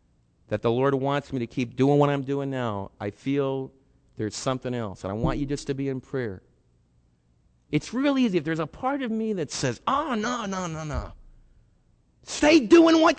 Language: English